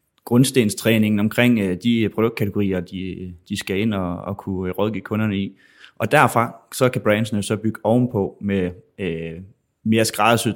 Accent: native